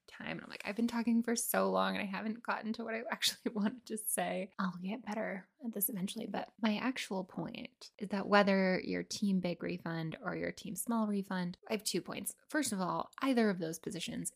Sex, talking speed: female, 225 wpm